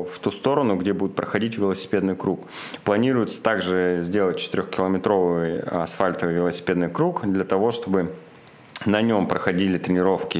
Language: Russian